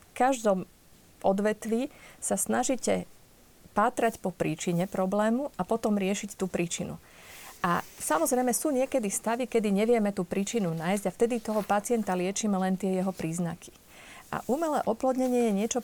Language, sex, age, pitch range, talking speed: Slovak, female, 40-59, 185-235 Hz, 145 wpm